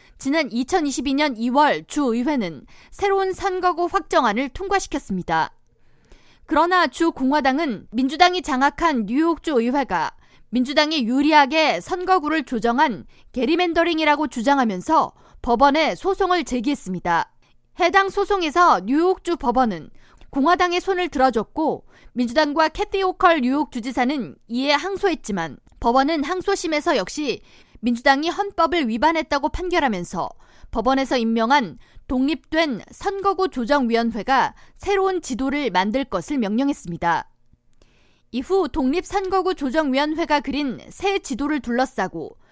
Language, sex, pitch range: Korean, female, 245-335 Hz